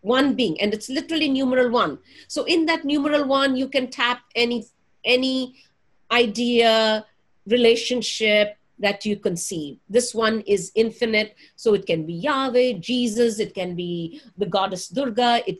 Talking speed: 150 wpm